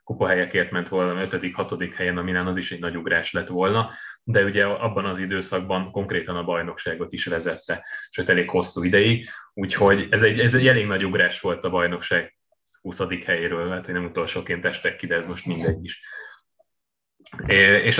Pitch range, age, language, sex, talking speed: 95-115 Hz, 20-39, Hungarian, male, 180 wpm